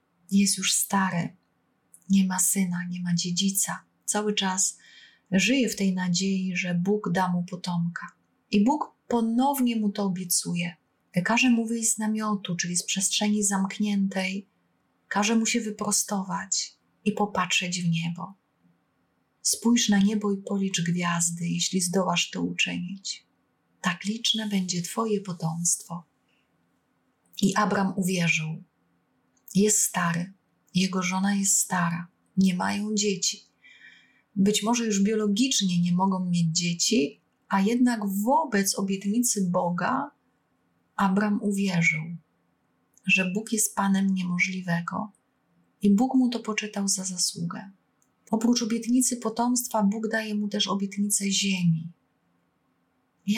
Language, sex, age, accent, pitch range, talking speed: Polish, female, 30-49, native, 175-215 Hz, 120 wpm